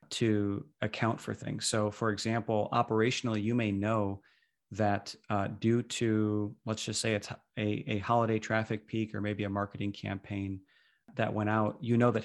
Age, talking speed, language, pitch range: 30-49, 170 wpm, English, 105-115 Hz